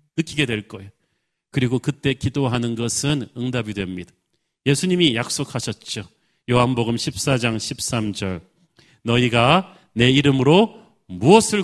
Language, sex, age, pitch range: Korean, male, 40-59, 115-155 Hz